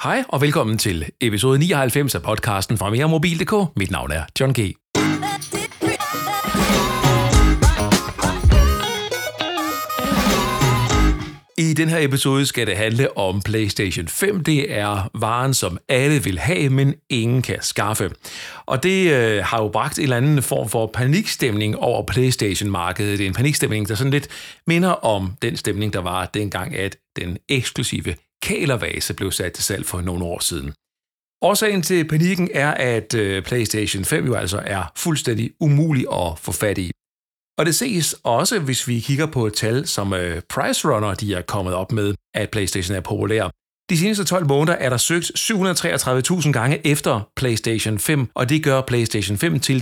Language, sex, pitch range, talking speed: Danish, male, 105-150 Hz, 160 wpm